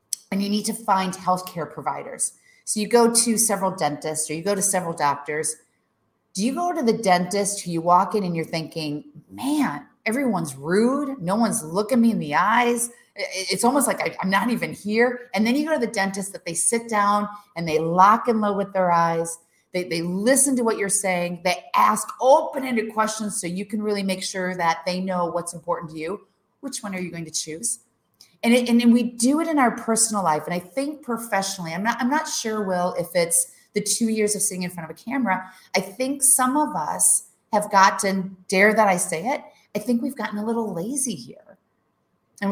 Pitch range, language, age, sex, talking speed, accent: 180-235 Hz, English, 30-49, female, 215 wpm, American